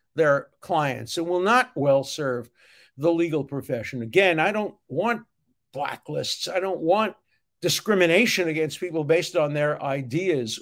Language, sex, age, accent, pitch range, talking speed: English, male, 50-69, American, 145-195 Hz, 140 wpm